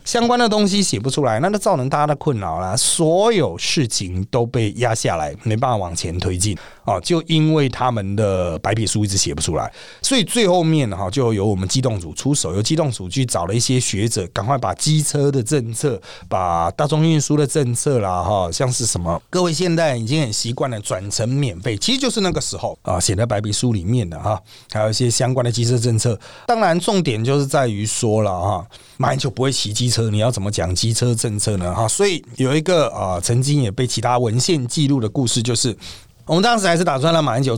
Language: Chinese